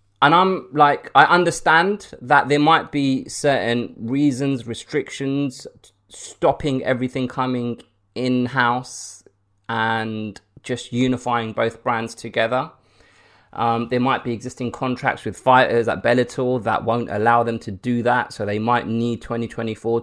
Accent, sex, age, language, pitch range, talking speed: British, male, 20-39, English, 110-130 Hz, 130 wpm